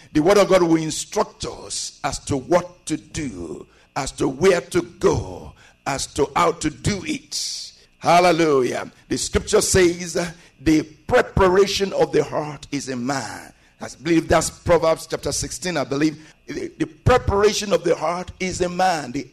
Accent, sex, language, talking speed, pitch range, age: Nigerian, male, English, 165 wpm, 160-215 Hz, 60-79